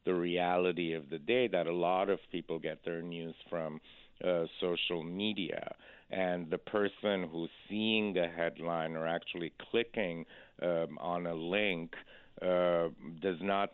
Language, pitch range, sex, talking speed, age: English, 80-90 Hz, male, 150 wpm, 50-69